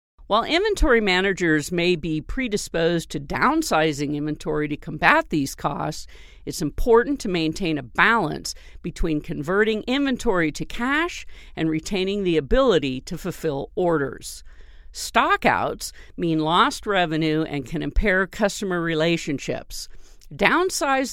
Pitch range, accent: 155-230 Hz, American